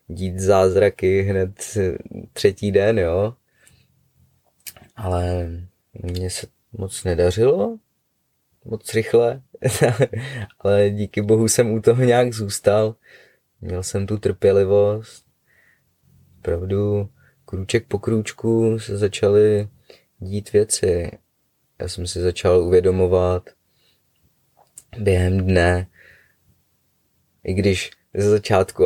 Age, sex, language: 20-39, male, Czech